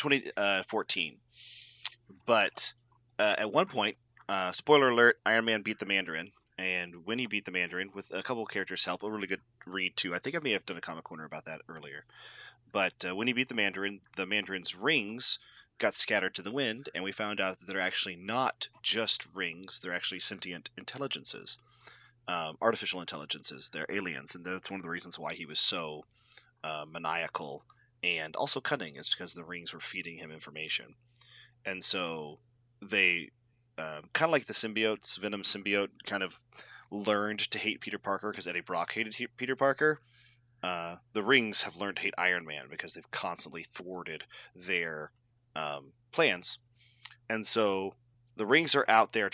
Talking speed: 180 wpm